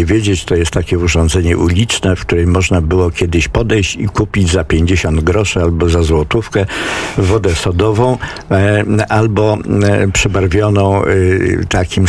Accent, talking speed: native, 125 wpm